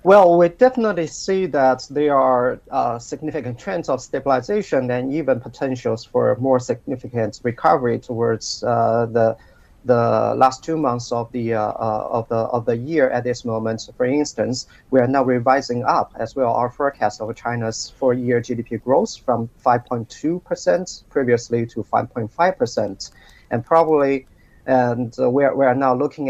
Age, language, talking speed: 40-59, English, 170 wpm